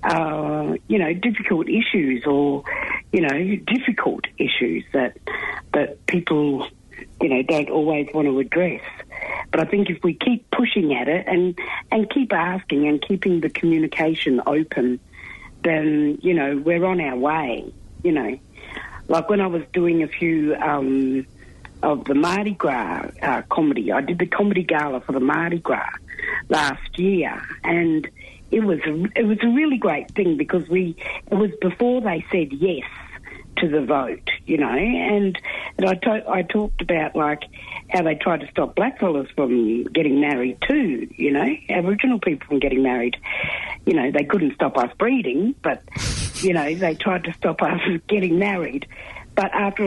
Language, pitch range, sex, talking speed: English, 150-200 Hz, female, 165 wpm